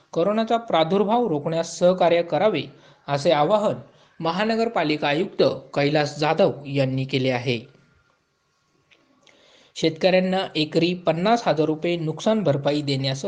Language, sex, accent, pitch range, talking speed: Marathi, male, native, 140-190 Hz, 75 wpm